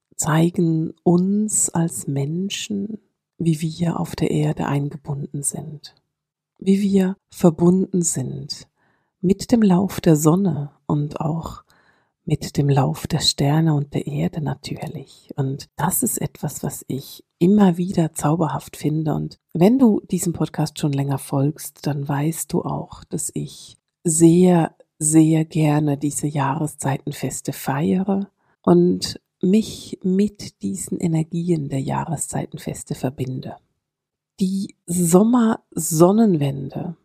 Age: 50-69